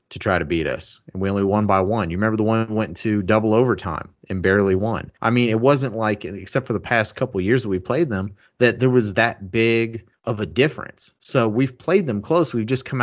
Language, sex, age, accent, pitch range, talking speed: English, male, 30-49, American, 100-125 Hz, 245 wpm